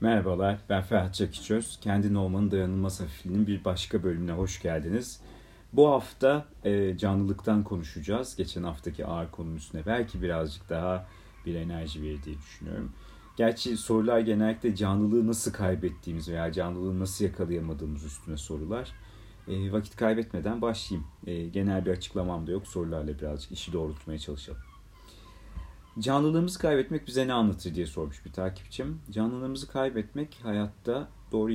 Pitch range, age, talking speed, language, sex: 85-110 Hz, 40-59, 125 wpm, Turkish, male